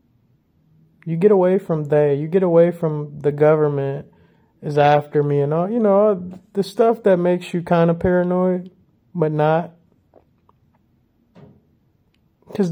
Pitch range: 145-185 Hz